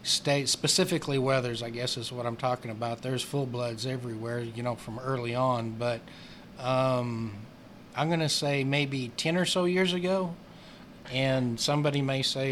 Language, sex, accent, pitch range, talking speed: English, male, American, 125-145 Hz, 165 wpm